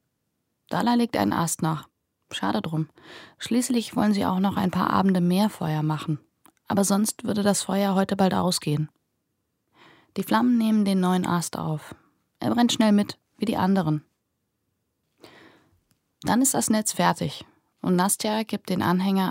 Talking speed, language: 155 wpm, German